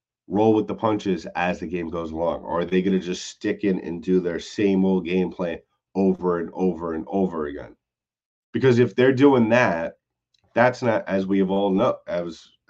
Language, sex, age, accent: English, male, 30-49, American